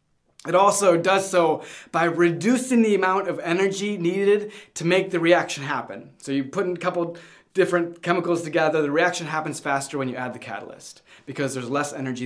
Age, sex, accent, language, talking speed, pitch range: 20-39, male, American, English, 185 wpm, 150-195 Hz